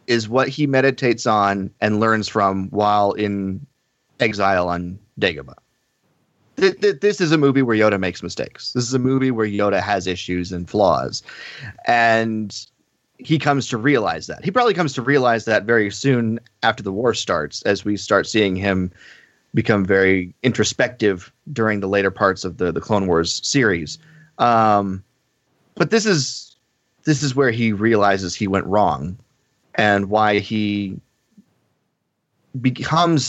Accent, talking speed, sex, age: American, 155 wpm, male, 30-49